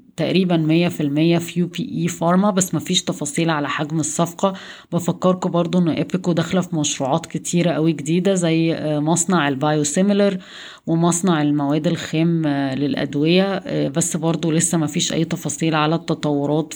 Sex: female